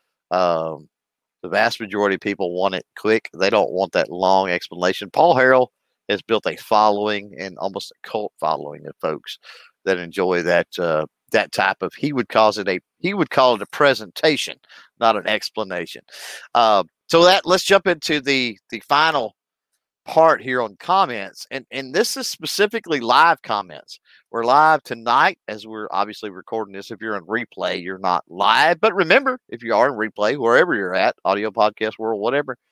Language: English